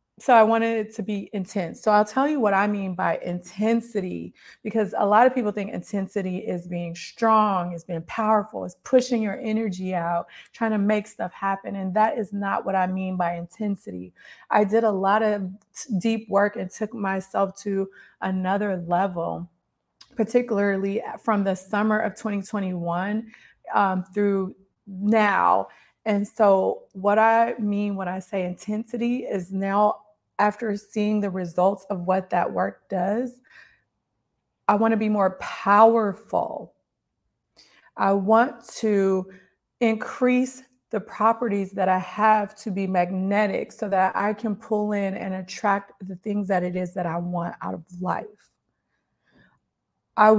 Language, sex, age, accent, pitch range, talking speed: English, female, 30-49, American, 190-220 Hz, 150 wpm